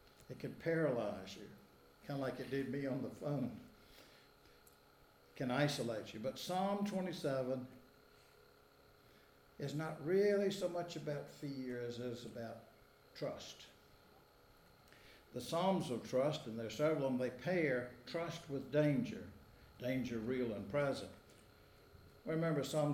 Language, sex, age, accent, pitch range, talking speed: English, male, 60-79, American, 125-155 Hz, 140 wpm